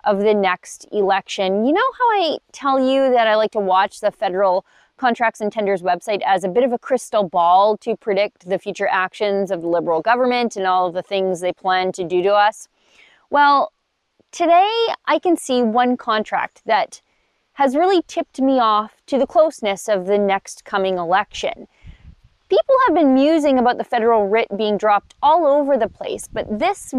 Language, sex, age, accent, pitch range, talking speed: English, female, 20-39, American, 200-280 Hz, 190 wpm